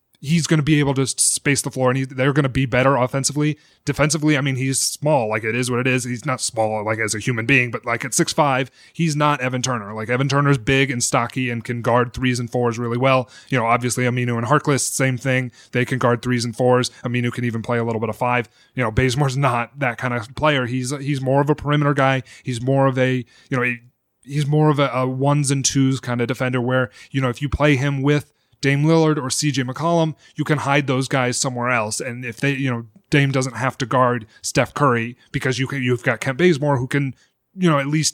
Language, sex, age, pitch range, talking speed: English, male, 30-49, 120-140 Hz, 245 wpm